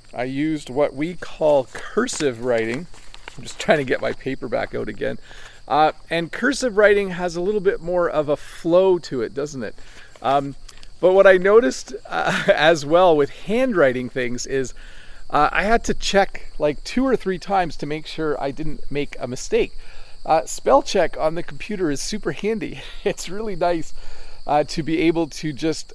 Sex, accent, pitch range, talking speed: male, American, 135-175 Hz, 185 wpm